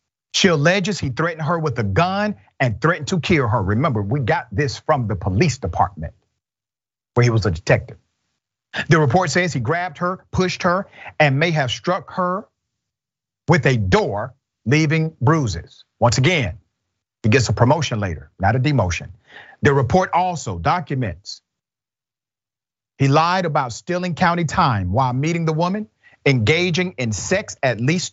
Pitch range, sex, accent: 110-165 Hz, male, American